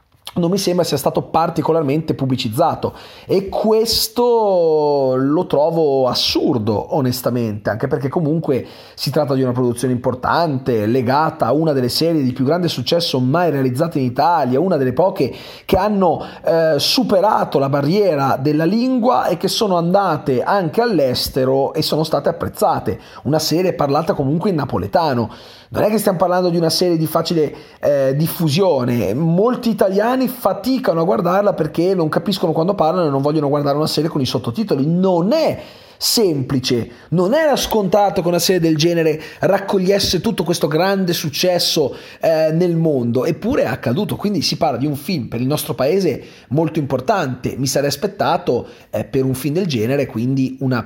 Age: 30-49